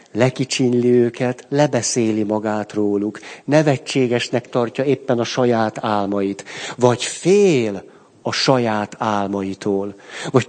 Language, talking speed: Hungarian, 95 wpm